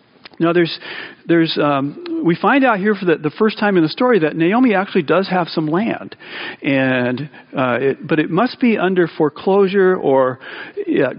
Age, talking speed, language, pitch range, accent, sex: 50-69, 180 wpm, English, 150-205 Hz, American, male